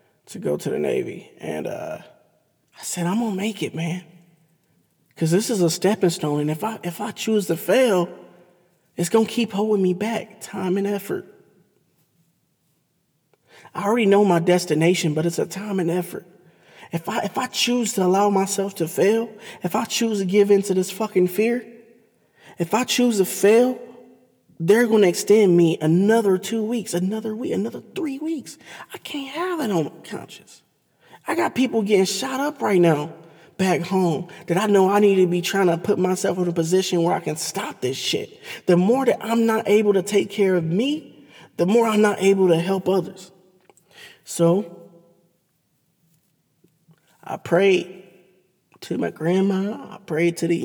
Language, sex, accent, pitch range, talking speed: English, male, American, 175-215 Hz, 180 wpm